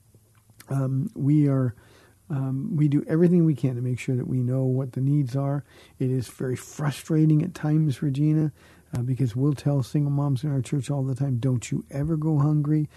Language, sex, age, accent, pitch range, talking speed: English, male, 50-69, American, 130-145 Hz, 200 wpm